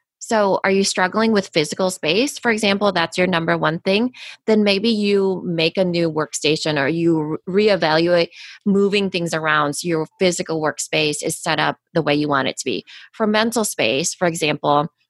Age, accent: 20-39, American